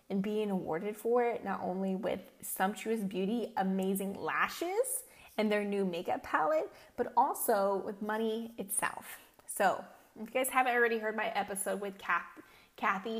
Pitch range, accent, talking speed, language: 195-245 Hz, American, 150 wpm, English